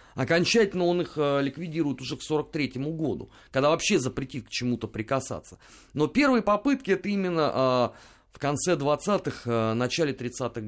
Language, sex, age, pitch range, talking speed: Russian, male, 30-49, 125-175 Hz, 155 wpm